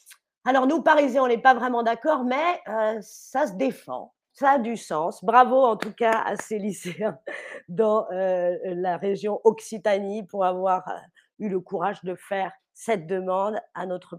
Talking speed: 175 wpm